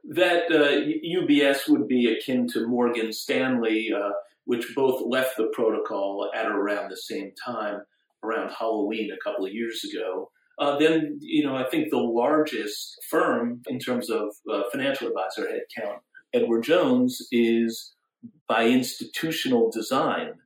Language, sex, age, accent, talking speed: English, male, 40-59, American, 145 wpm